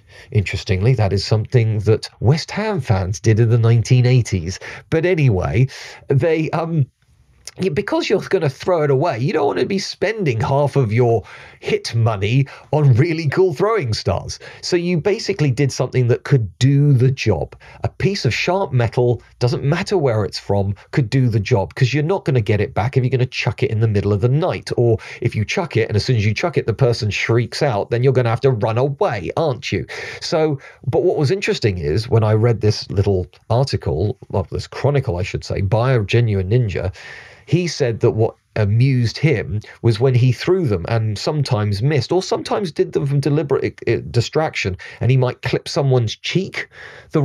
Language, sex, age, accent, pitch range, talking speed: English, male, 40-59, British, 110-145 Hz, 200 wpm